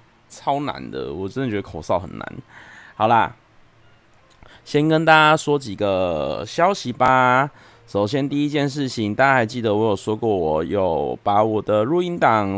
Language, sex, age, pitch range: Chinese, male, 20-39, 105-130 Hz